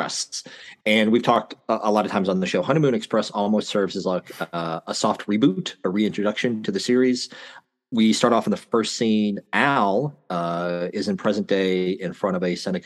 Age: 40-59